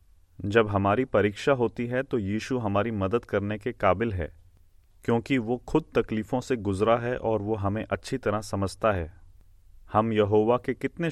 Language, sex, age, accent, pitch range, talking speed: Hindi, male, 30-49, native, 90-115 Hz, 165 wpm